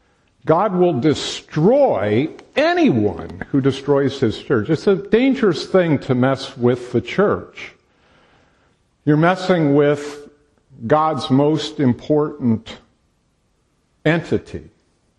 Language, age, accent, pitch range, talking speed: English, 50-69, American, 115-155 Hz, 95 wpm